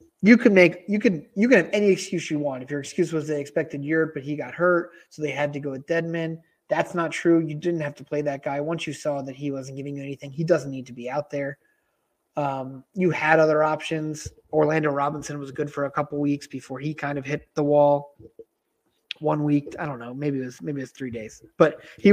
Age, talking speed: 30-49, 245 wpm